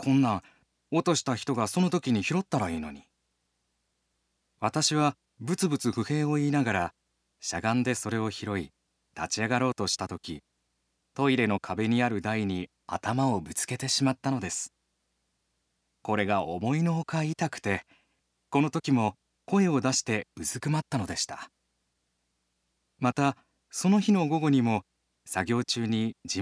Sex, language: male, Japanese